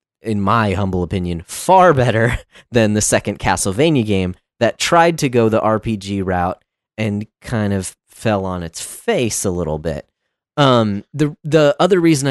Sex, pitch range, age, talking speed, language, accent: male, 90-125 Hz, 30-49, 160 wpm, English, American